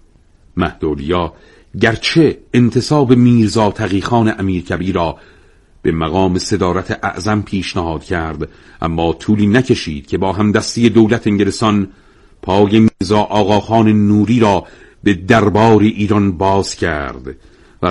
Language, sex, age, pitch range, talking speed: Persian, male, 50-69, 90-110 Hz, 105 wpm